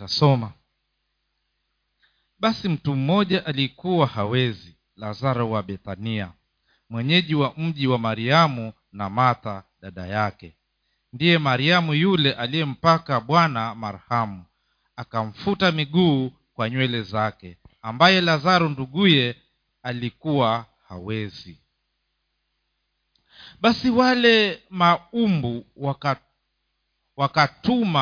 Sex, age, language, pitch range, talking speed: male, 50-69, Swahili, 120-180 Hz, 80 wpm